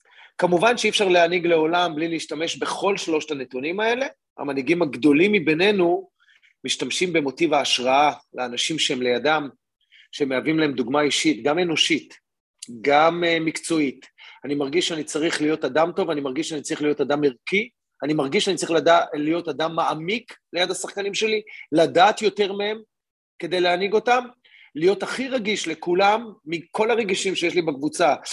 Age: 30-49